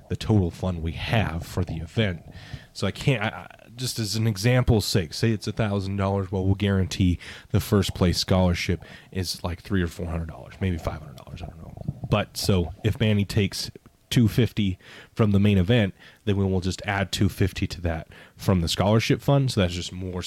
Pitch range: 90-110 Hz